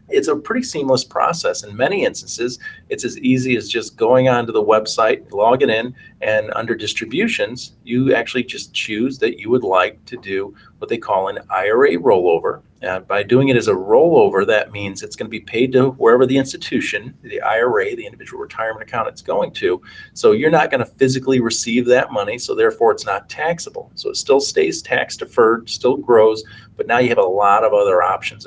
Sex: male